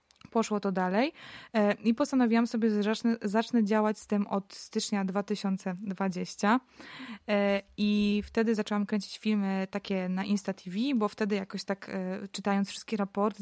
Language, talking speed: Polish, 135 wpm